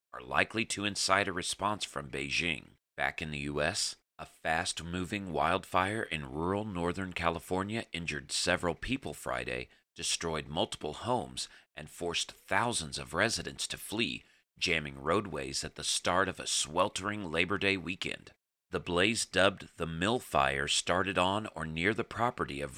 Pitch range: 75-100 Hz